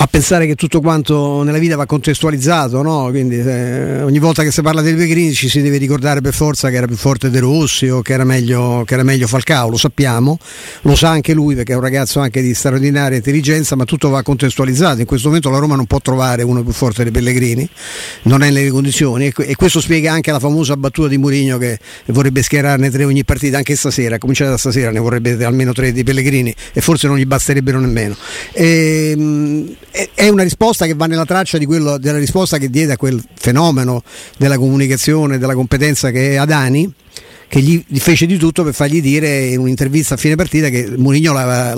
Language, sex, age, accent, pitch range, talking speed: Italian, male, 50-69, native, 130-155 Hz, 210 wpm